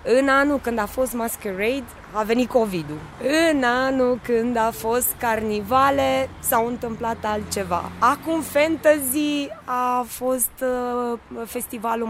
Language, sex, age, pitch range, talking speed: English, female, 20-39, 210-260 Hz, 120 wpm